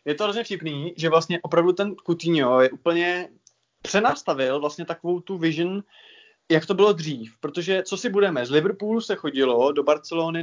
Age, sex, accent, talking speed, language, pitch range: 20-39, male, native, 175 wpm, Czech, 140-180 Hz